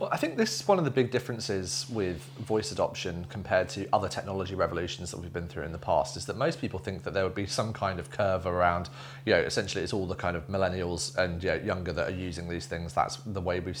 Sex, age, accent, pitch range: male, 30-49, British, 90-120 Hz